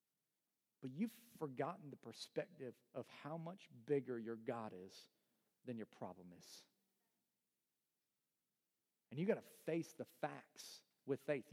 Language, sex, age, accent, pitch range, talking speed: English, male, 40-59, American, 125-165 Hz, 130 wpm